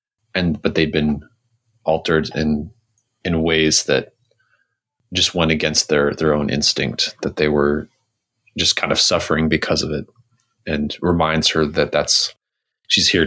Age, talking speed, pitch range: 30-49, 150 wpm, 80-115 Hz